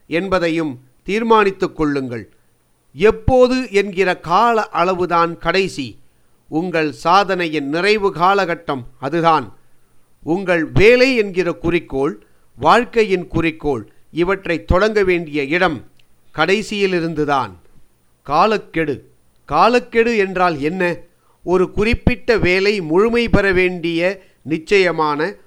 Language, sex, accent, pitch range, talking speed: Tamil, male, native, 155-195 Hz, 80 wpm